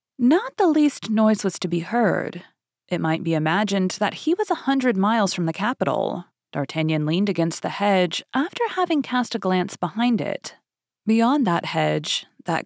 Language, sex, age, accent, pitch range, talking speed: English, female, 30-49, American, 170-245 Hz, 175 wpm